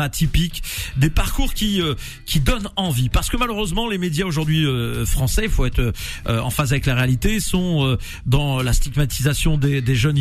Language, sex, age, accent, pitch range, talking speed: French, male, 40-59, French, 135-175 Hz, 195 wpm